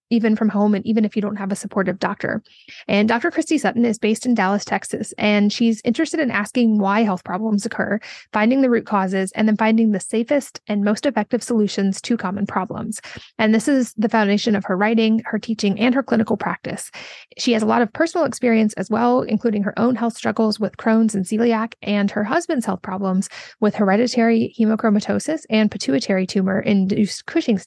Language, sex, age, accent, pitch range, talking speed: English, female, 30-49, American, 200-230 Hz, 195 wpm